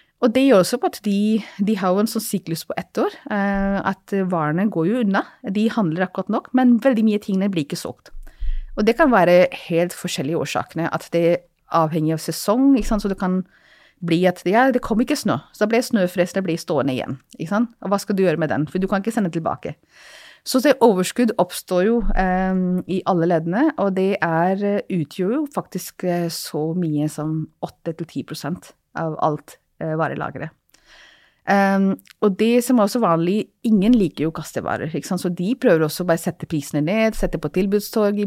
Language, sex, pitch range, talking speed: English, female, 165-220 Hz, 200 wpm